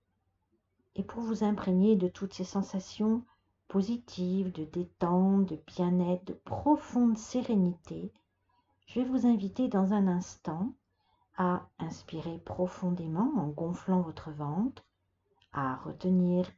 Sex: female